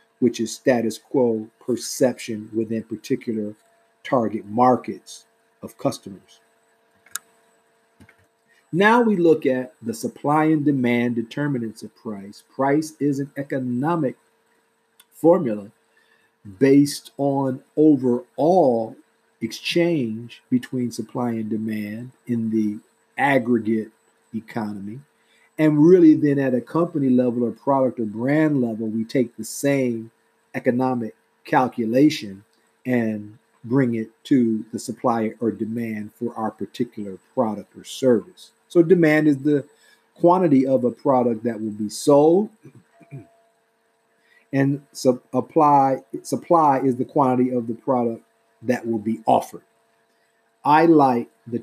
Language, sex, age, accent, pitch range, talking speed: English, male, 50-69, American, 110-140 Hz, 115 wpm